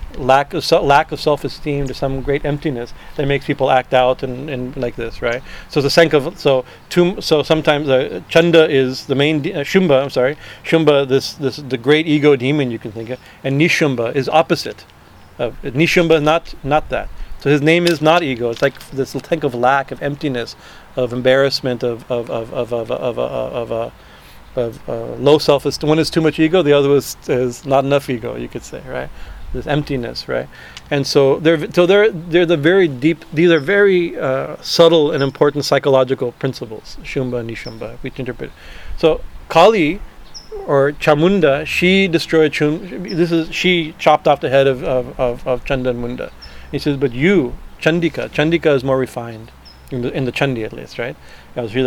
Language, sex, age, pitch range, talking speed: English, male, 40-59, 125-155 Hz, 200 wpm